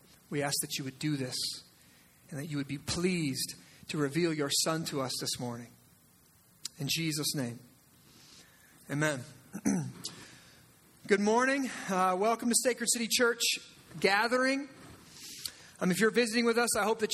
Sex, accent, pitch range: male, American, 175-235 Hz